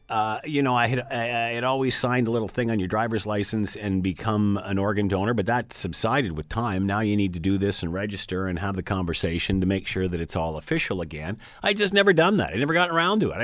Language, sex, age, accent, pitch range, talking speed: English, male, 50-69, American, 95-130 Hz, 255 wpm